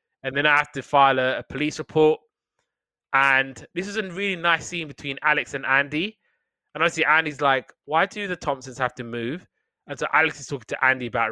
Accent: British